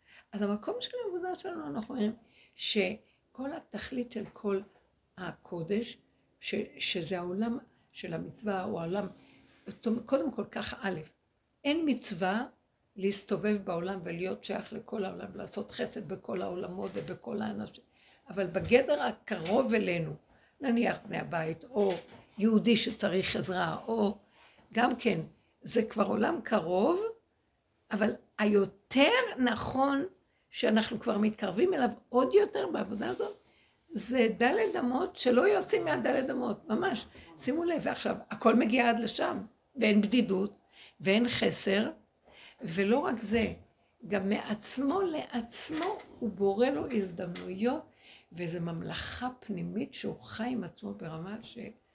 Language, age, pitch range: Hebrew, 60-79, 195-250 Hz